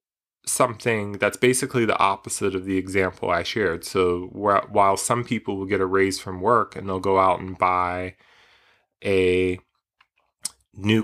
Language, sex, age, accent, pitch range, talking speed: English, male, 30-49, American, 95-110 Hz, 150 wpm